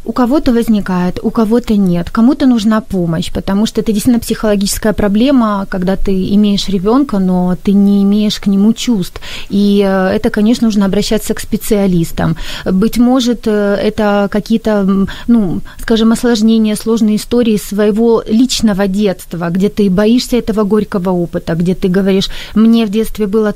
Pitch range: 200-235 Hz